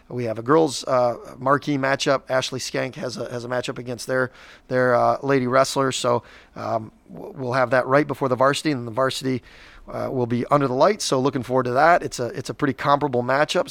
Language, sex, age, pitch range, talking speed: English, male, 30-49, 125-140 Hz, 220 wpm